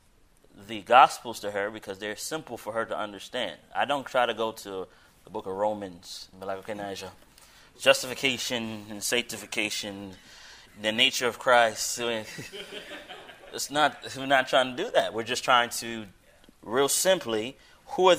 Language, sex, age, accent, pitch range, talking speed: English, male, 20-39, American, 105-130 Hz, 145 wpm